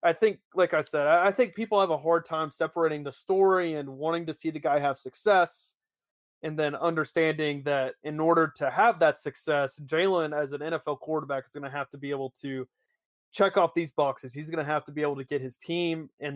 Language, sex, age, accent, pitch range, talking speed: English, male, 30-49, American, 140-165 Hz, 225 wpm